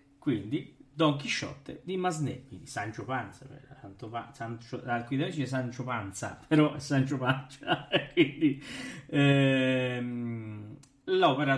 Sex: male